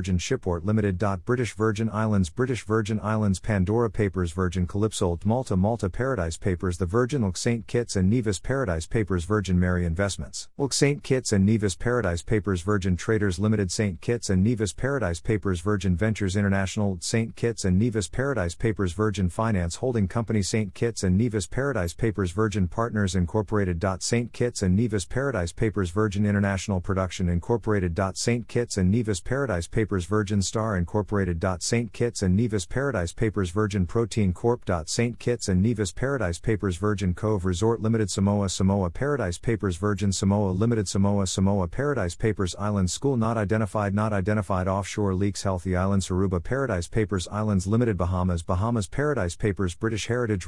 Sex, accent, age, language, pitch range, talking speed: male, American, 50-69, English, 95-115 Hz, 165 wpm